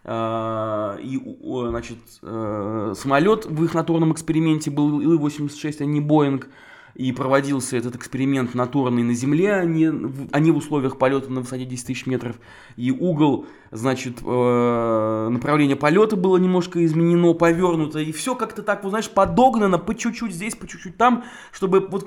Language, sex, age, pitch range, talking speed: Russian, male, 20-39, 135-185 Hz, 145 wpm